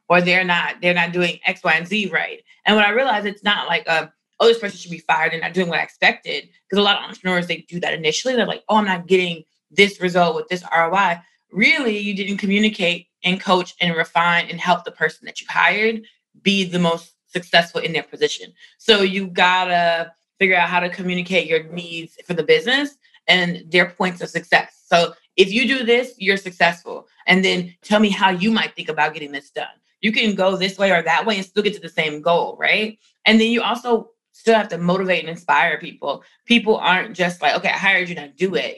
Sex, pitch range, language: female, 170-210 Hz, English